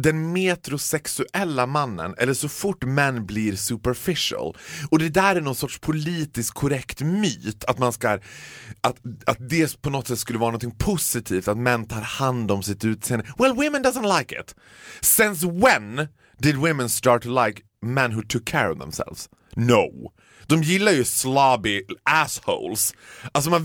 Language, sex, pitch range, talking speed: Swedish, male, 115-165 Hz, 160 wpm